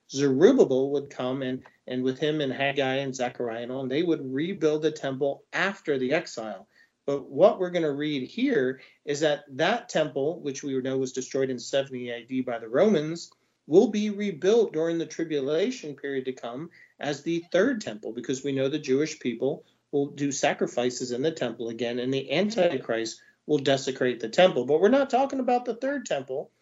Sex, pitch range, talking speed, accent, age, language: male, 130-170 Hz, 185 wpm, American, 40-59, English